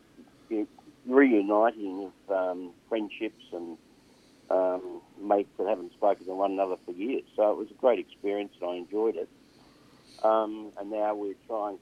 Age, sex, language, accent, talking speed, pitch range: 60-79, male, English, Australian, 155 wpm, 90-110 Hz